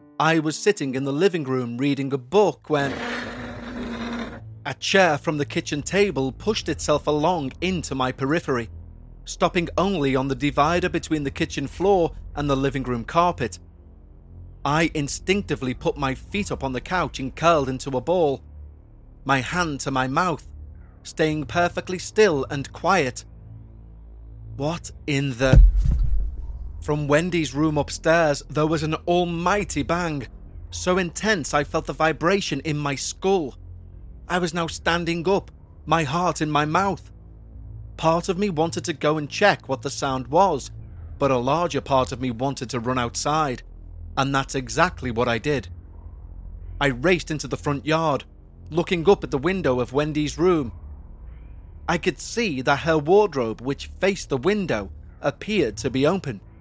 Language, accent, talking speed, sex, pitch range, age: English, British, 155 wpm, male, 110-165 Hz, 30-49